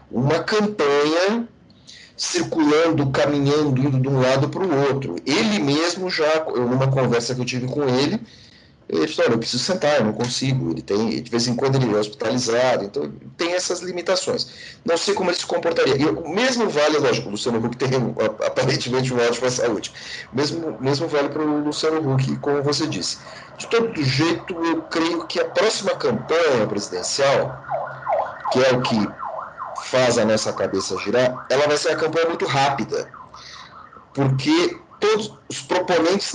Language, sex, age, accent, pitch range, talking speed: Portuguese, male, 40-59, Brazilian, 130-170 Hz, 170 wpm